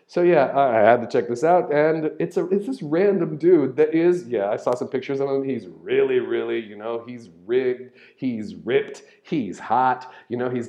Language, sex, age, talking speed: English, male, 40-59, 215 wpm